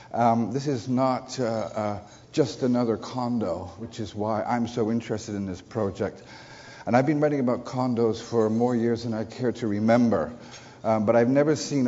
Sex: male